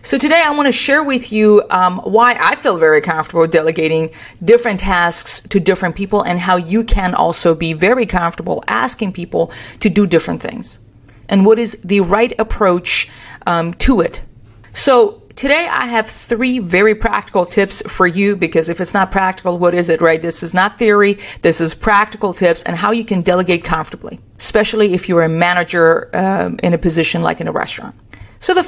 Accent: American